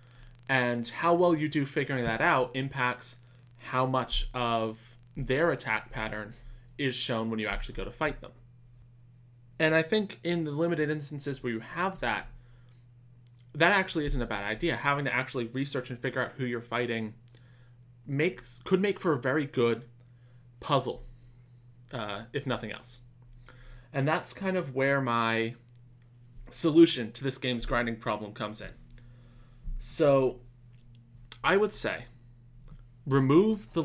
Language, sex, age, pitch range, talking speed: English, male, 20-39, 120-135 Hz, 145 wpm